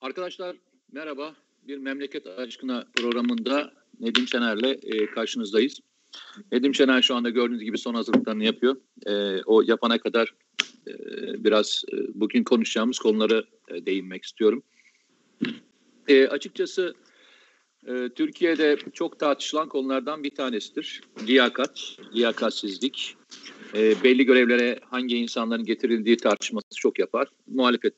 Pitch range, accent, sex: 120-205 Hz, native, male